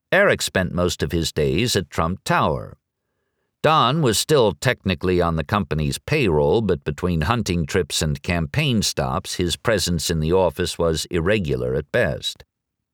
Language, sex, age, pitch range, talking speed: English, male, 60-79, 85-115 Hz, 155 wpm